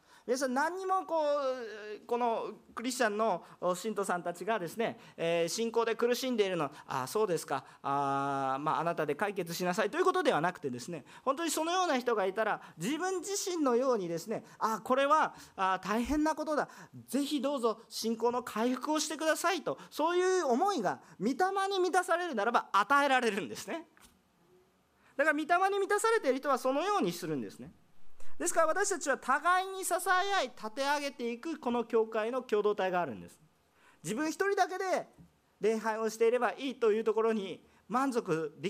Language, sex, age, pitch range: Japanese, male, 40-59, 215-325 Hz